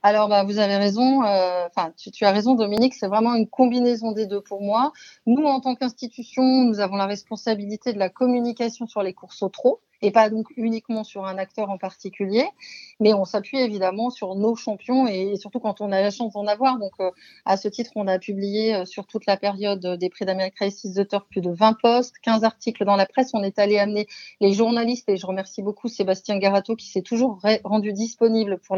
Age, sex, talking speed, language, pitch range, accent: 30-49, female, 225 wpm, French, 195-235 Hz, French